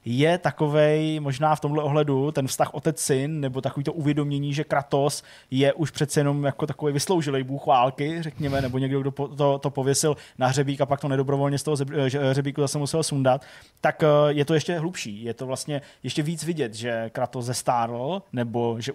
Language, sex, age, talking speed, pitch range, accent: Czech, male, 20-39, 200 wpm, 125-150 Hz, native